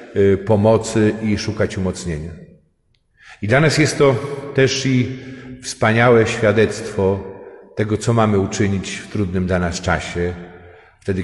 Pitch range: 95-120 Hz